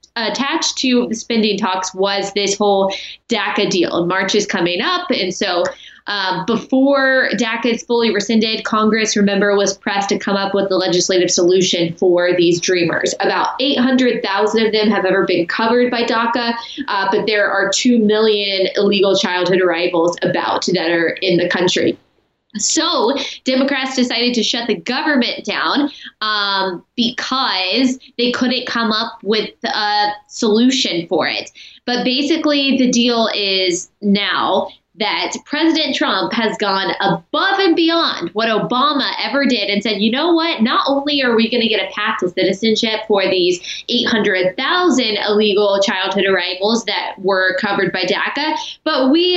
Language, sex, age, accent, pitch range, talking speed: English, female, 20-39, American, 195-260 Hz, 155 wpm